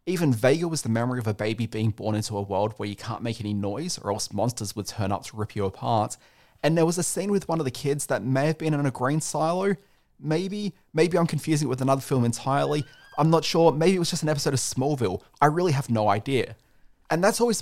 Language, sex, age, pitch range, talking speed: English, male, 30-49, 105-145 Hz, 255 wpm